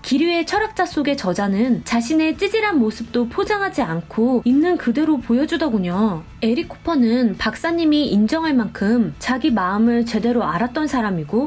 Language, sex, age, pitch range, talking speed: English, female, 20-39, 230-330 Hz, 115 wpm